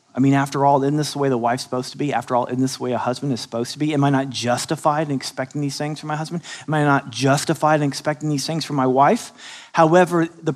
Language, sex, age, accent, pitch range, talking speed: English, male, 40-59, American, 150-205 Hz, 280 wpm